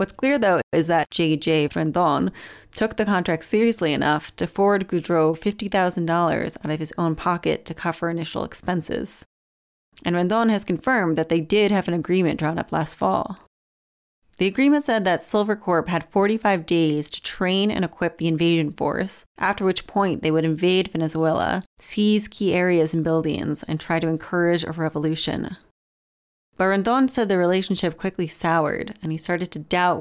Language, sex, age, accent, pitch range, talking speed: English, female, 30-49, American, 155-190 Hz, 170 wpm